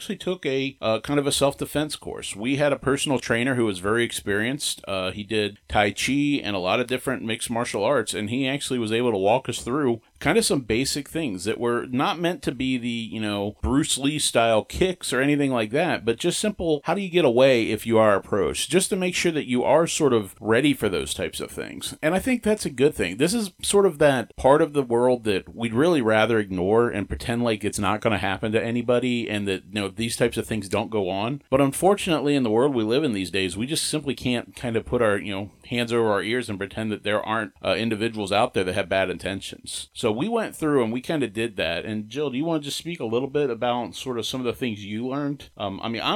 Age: 40-59